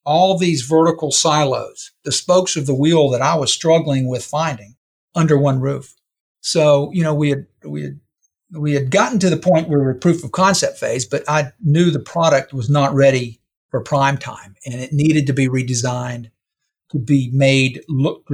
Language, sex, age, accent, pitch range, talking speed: English, male, 50-69, American, 135-160 Hz, 195 wpm